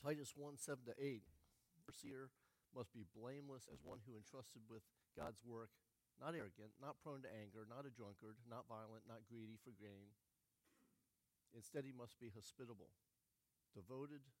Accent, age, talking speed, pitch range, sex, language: American, 50-69, 160 wpm, 110-130 Hz, male, English